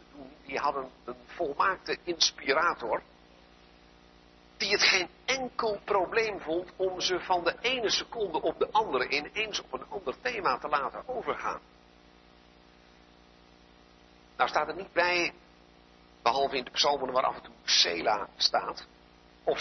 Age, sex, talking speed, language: 50-69, male, 135 wpm, Dutch